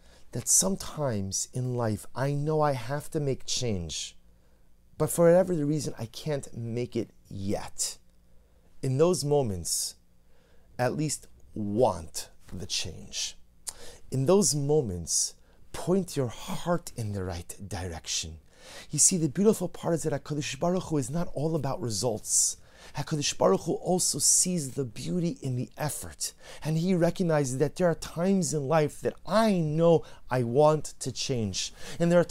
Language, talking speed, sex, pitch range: English, 155 wpm, male, 115-175 Hz